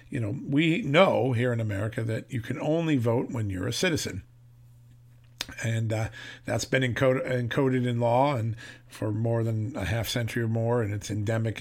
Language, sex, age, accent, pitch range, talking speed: English, male, 50-69, American, 115-135 Hz, 185 wpm